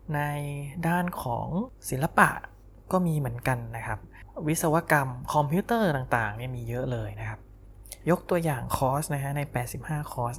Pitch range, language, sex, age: 120-170 Hz, Thai, male, 20-39